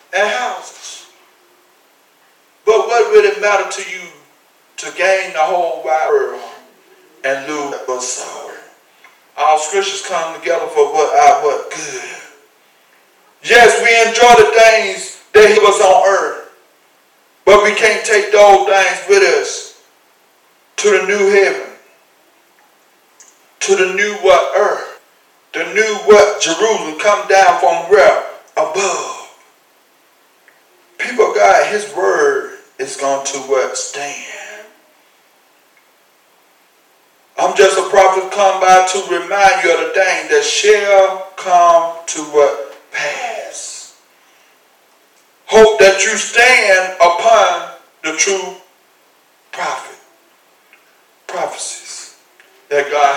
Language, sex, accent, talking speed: English, male, American, 115 wpm